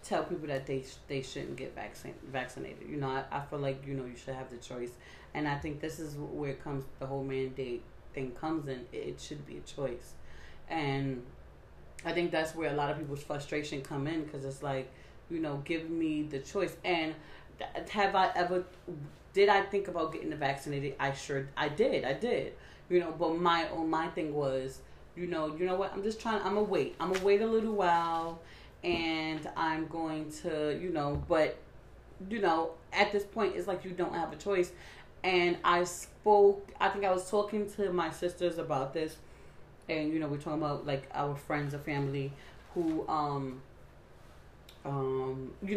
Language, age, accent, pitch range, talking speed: English, 30-49, American, 140-175 Hz, 200 wpm